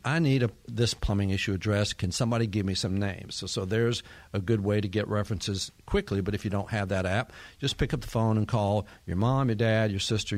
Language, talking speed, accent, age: English, 250 wpm, American, 50-69